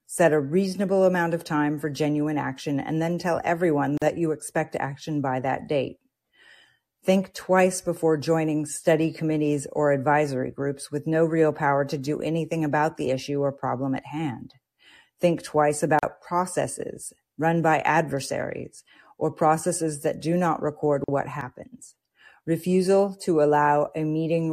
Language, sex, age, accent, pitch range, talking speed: English, female, 40-59, American, 145-180 Hz, 155 wpm